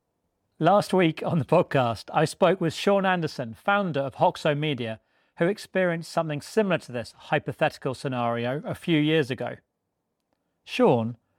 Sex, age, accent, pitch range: male, 40-59, British, 130-170 Hz